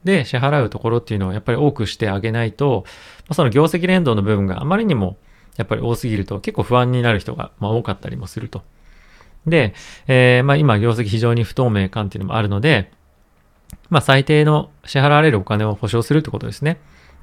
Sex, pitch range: male, 105-145 Hz